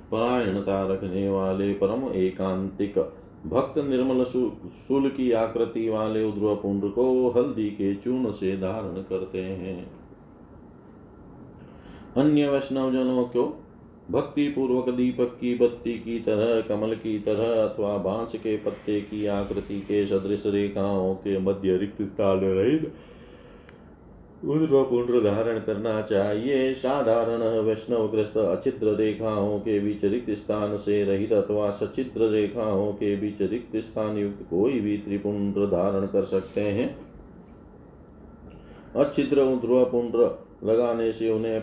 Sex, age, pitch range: male, 40-59, 100-120 Hz